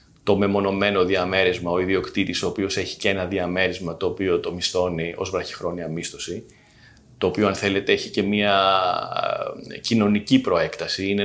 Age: 30-49